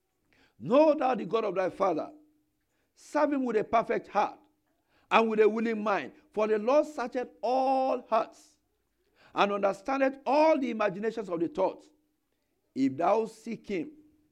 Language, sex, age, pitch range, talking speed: English, male, 50-69, 215-305 Hz, 150 wpm